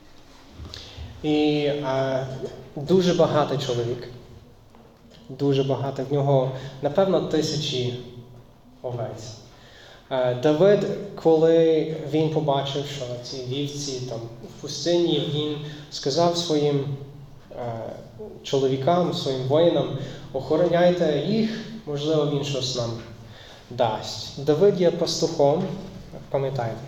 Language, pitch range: Ukrainian, 125-150 Hz